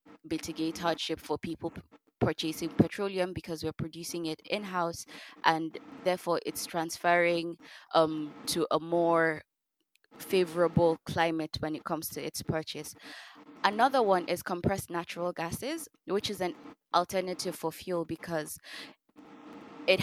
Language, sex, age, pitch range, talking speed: English, female, 20-39, 160-180 Hz, 125 wpm